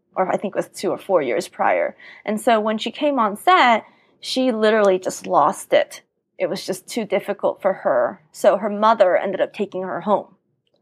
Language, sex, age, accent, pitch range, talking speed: English, female, 20-39, American, 190-250 Hz, 205 wpm